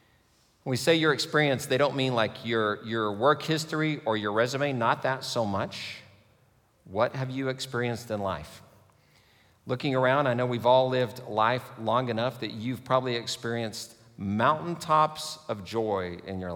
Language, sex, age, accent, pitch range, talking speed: English, male, 50-69, American, 110-150 Hz, 165 wpm